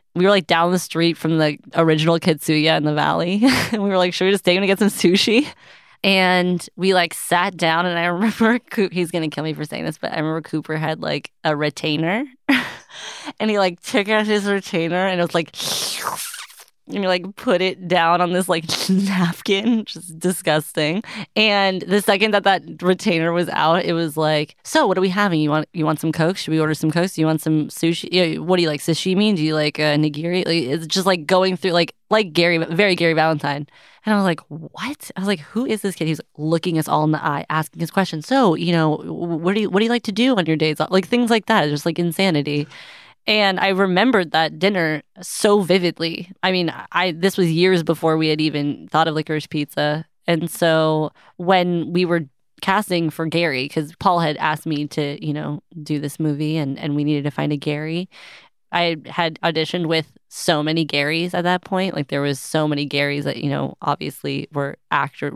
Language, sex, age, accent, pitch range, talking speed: English, female, 20-39, American, 155-190 Hz, 225 wpm